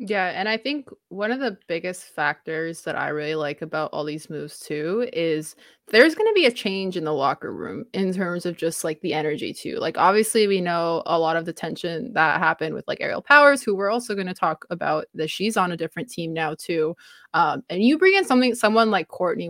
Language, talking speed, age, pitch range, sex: English, 235 wpm, 20-39, 180-235 Hz, female